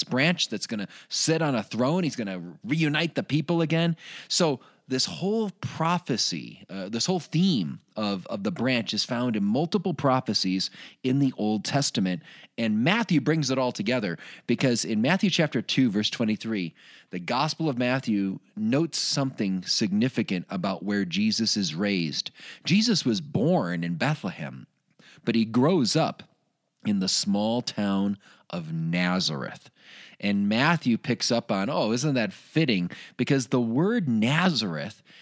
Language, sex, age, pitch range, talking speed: English, male, 30-49, 105-155 Hz, 150 wpm